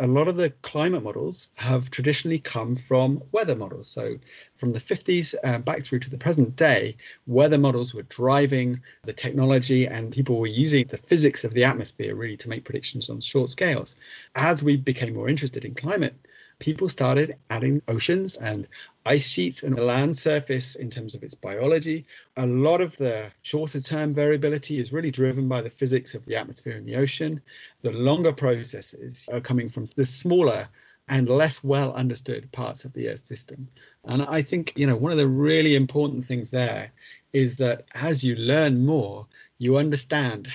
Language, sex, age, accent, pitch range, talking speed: English, male, 40-59, British, 125-150 Hz, 180 wpm